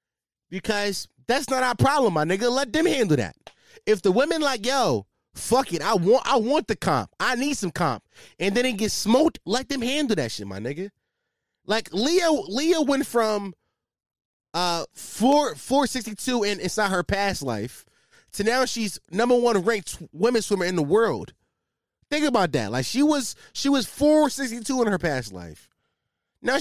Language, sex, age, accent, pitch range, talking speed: English, male, 20-39, American, 185-275 Hz, 180 wpm